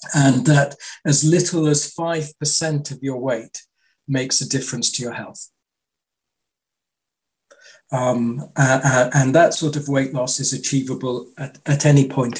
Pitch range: 125-145 Hz